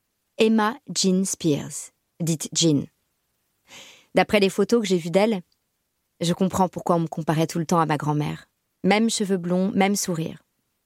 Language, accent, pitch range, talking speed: French, French, 170-205 Hz, 160 wpm